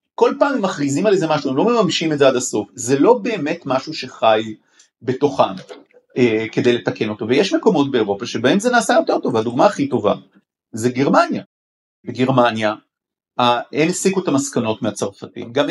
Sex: male